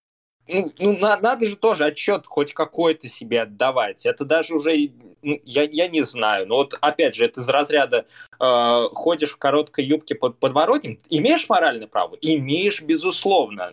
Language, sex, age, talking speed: Russian, male, 20-39, 160 wpm